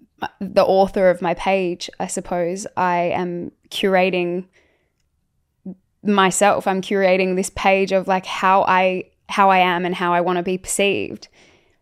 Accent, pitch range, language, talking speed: Australian, 175-195 Hz, English, 145 wpm